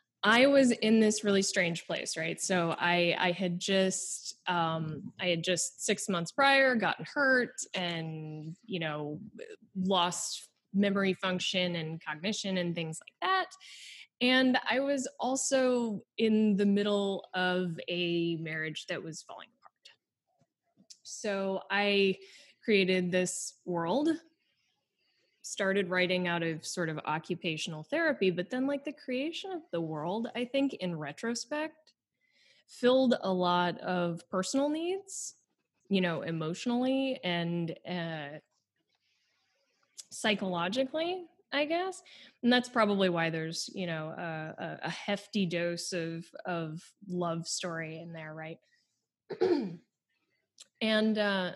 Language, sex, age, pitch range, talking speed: English, female, 20-39, 170-240 Hz, 125 wpm